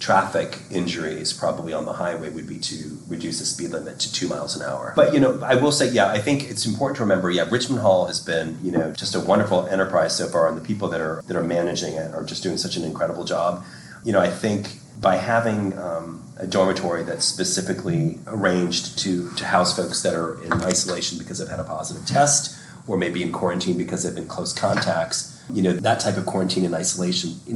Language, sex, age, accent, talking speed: English, male, 30-49, American, 225 wpm